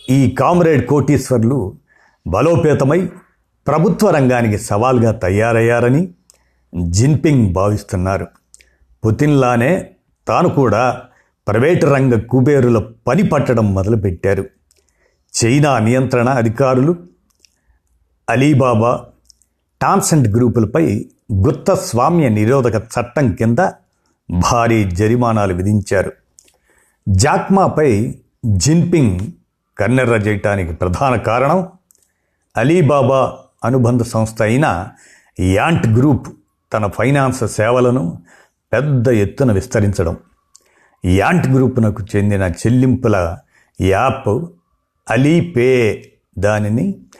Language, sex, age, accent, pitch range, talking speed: Telugu, male, 50-69, native, 105-140 Hz, 70 wpm